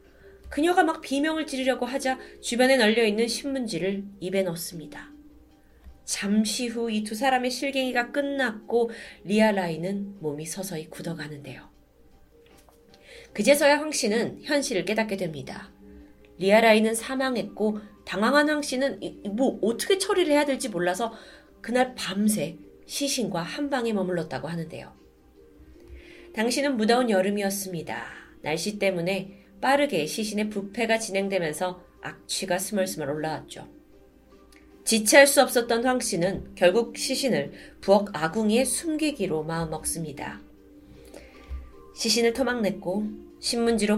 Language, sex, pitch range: Korean, female, 175-255 Hz